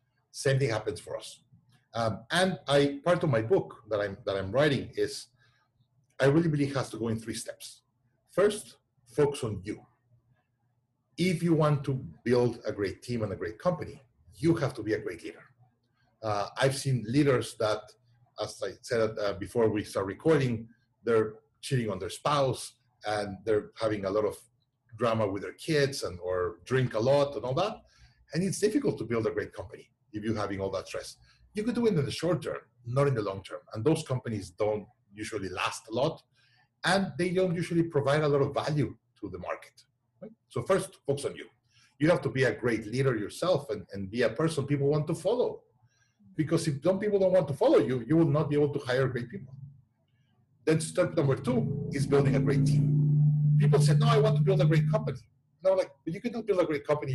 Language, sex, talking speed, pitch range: English, male, 210 wpm, 115-150 Hz